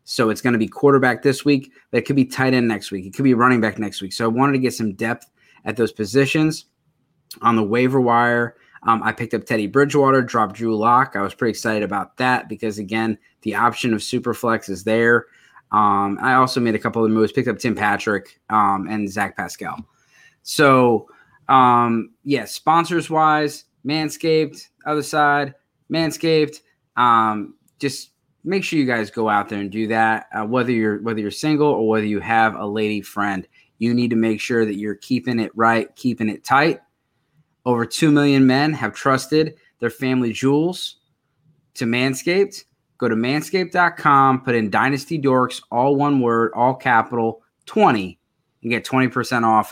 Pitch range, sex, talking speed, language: 110-140 Hz, male, 180 wpm, English